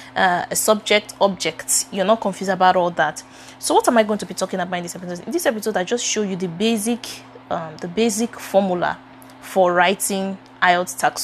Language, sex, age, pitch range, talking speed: English, female, 20-39, 175-210 Hz, 210 wpm